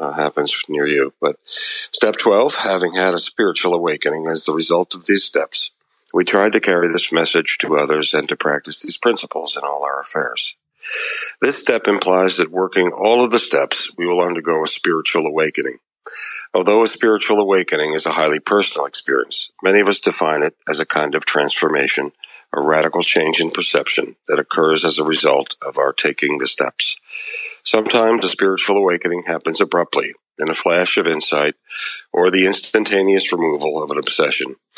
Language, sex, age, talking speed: English, male, 50-69, 175 wpm